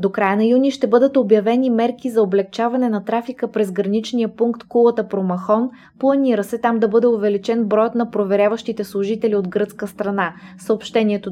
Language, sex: Bulgarian, female